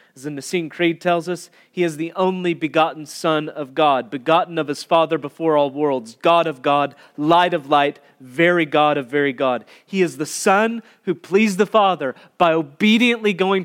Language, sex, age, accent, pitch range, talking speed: English, male, 30-49, American, 145-180 Hz, 190 wpm